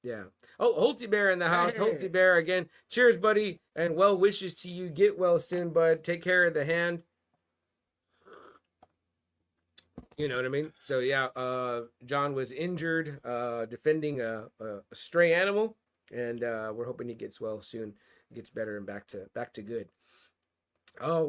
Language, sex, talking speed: English, male, 170 wpm